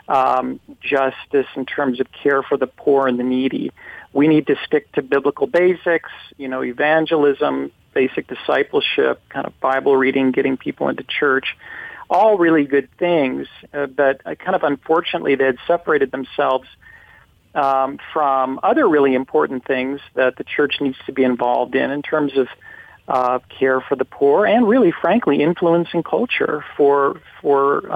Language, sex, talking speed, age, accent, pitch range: English, male, 160 wpm, 40-59, American, 135-170 Hz